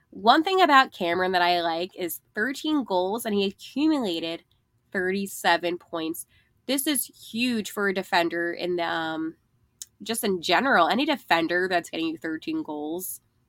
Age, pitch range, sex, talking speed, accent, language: 20-39, 185-250 Hz, female, 145 wpm, American, English